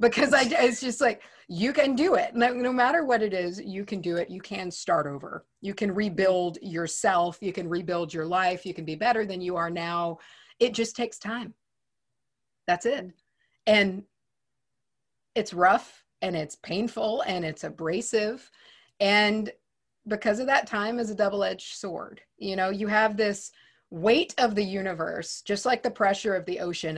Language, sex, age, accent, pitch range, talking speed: English, female, 30-49, American, 170-225 Hz, 180 wpm